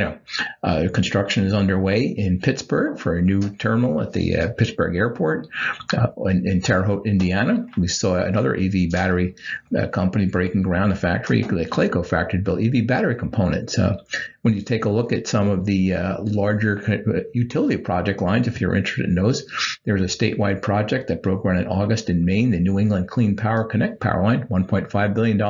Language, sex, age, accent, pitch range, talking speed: English, male, 50-69, American, 95-110 Hz, 190 wpm